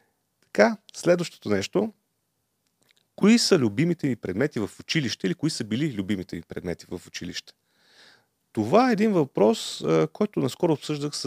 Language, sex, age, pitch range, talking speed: Bulgarian, male, 30-49, 110-155 Hz, 135 wpm